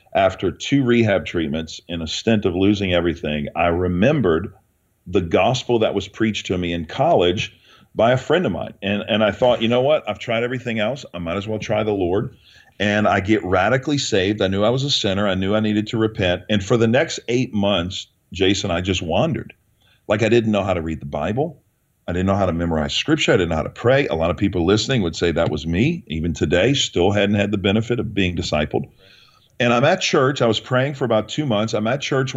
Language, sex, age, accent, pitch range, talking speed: English, male, 40-59, American, 90-115 Hz, 235 wpm